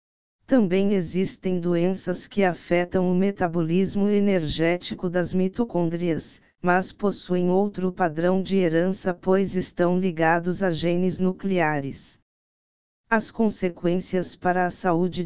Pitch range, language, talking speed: 175-190 Hz, Portuguese, 105 wpm